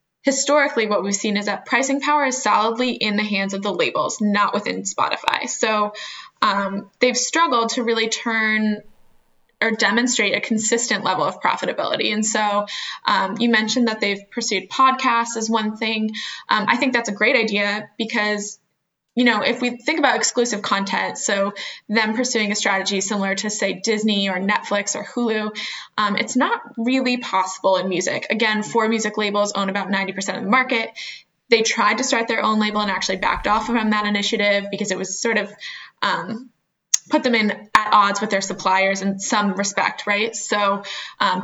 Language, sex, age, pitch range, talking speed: English, female, 10-29, 200-235 Hz, 180 wpm